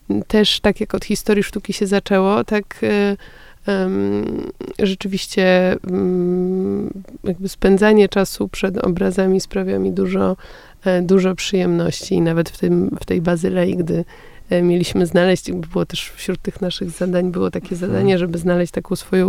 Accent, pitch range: native, 170-190 Hz